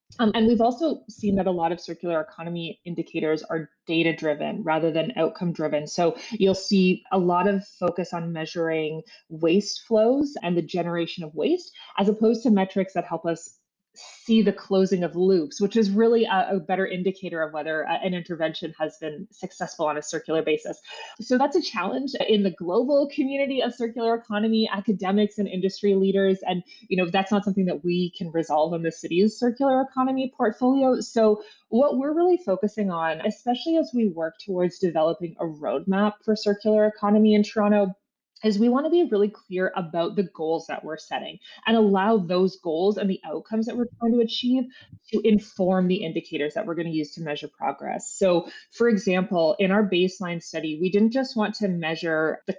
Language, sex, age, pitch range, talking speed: English, female, 20-39, 170-220 Hz, 190 wpm